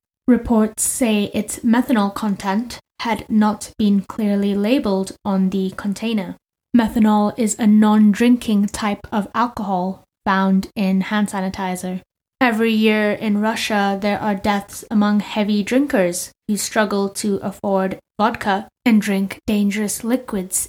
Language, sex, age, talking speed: English, female, 20-39, 125 wpm